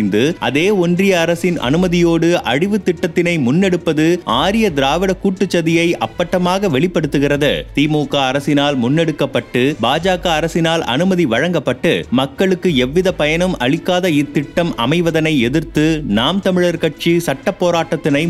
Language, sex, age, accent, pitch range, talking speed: Tamil, male, 30-49, native, 145-175 Hz, 105 wpm